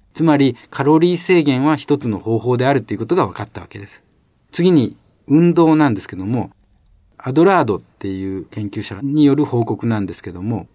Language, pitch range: Japanese, 105-145 Hz